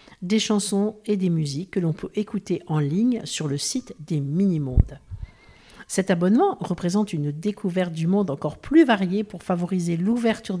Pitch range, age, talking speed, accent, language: 155-215 Hz, 50-69, 165 wpm, French, French